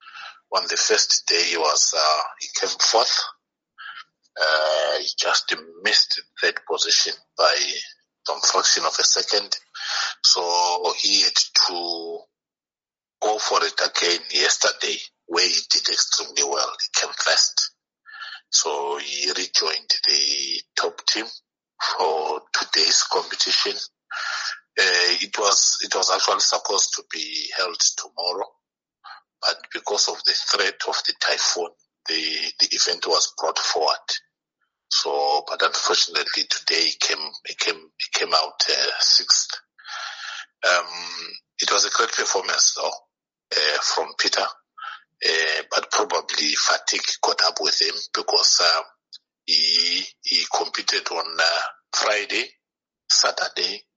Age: 60-79